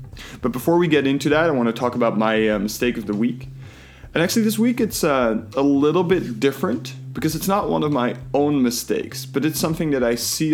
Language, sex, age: English, male, 20-39